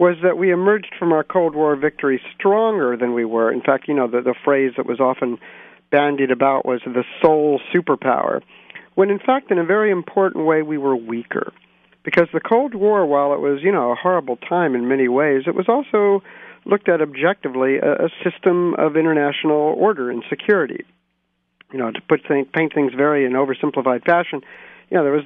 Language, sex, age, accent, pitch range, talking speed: English, male, 50-69, American, 135-180 Hz, 200 wpm